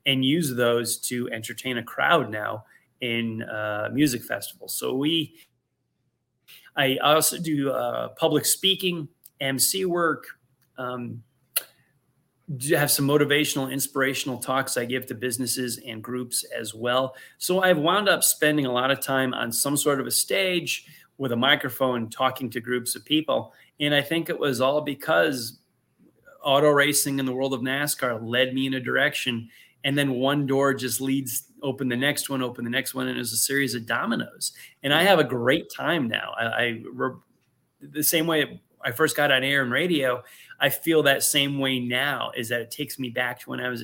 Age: 30-49